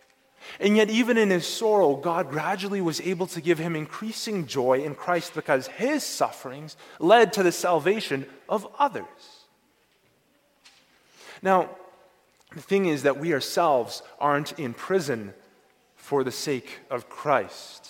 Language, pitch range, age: English, 140-195 Hz, 30-49